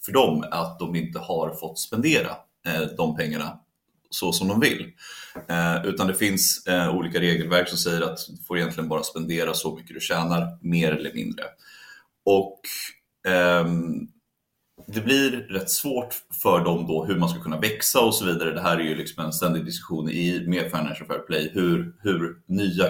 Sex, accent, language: male, native, Swedish